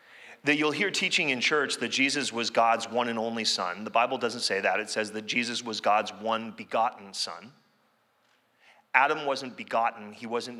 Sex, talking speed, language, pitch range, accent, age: male, 185 wpm, English, 110-130 Hz, American, 30-49